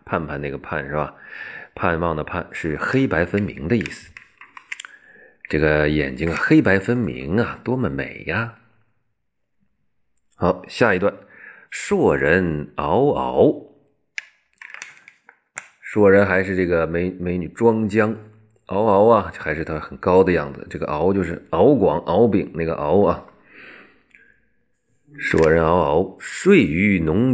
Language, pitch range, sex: Chinese, 85-110 Hz, male